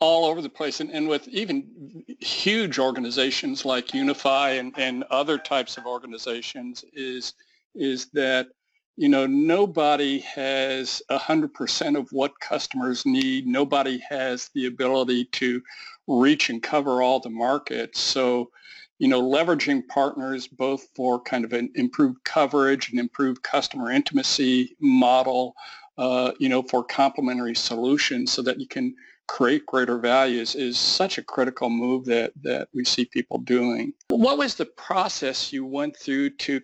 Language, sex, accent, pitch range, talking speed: English, male, American, 130-190 Hz, 150 wpm